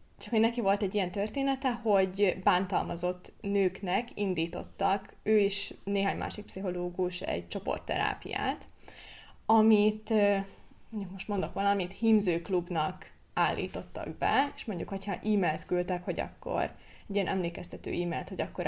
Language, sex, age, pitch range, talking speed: Hungarian, female, 20-39, 180-210 Hz, 125 wpm